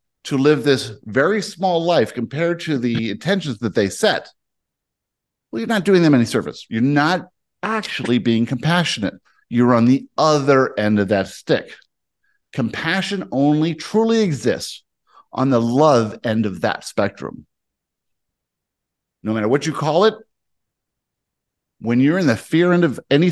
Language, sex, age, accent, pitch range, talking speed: English, male, 50-69, American, 110-155 Hz, 150 wpm